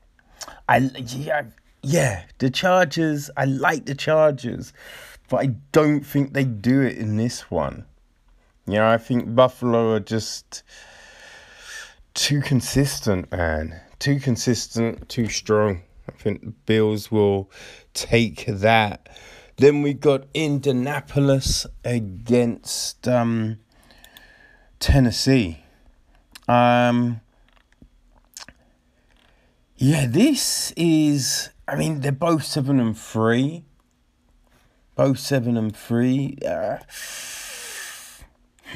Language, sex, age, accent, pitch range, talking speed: English, male, 20-39, British, 110-145 Hz, 100 wpm